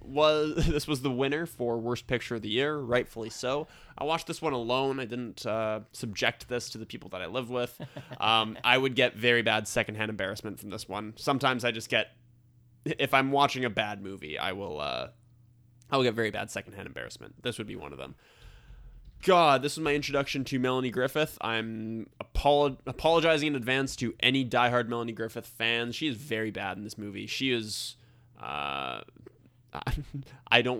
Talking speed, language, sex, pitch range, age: 190 wpm, English, male, 115-130 Hz, 20-39